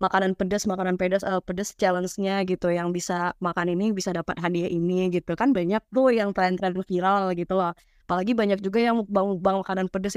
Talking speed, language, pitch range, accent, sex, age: 190 wpm, Indonesian, 185-230 Hz, native, female, 20-39